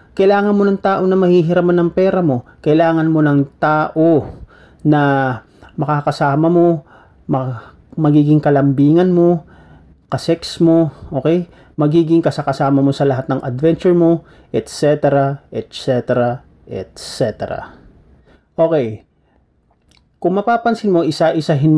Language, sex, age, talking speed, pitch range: Filipino, male, 40-59, 105 wpm, 135-170 Hz